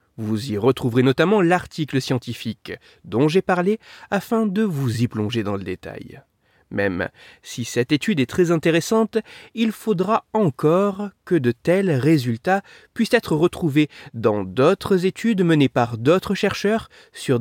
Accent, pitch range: French, 120-195 Hz